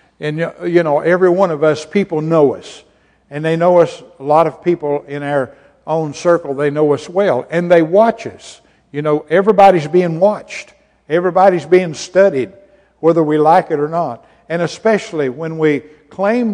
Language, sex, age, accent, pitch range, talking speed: English, male, 60-79, American, 140-180 Hz, 180 wpm